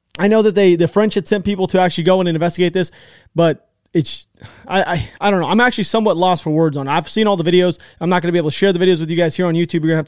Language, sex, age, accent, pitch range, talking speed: English, male, 30-49, American, 155-195 Hz, 335 wpm